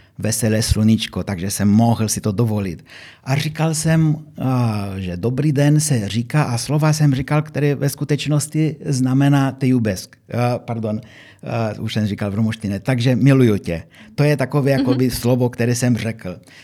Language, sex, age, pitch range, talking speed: Czech, male, 50-69, 120-155 Hz, 150 wpm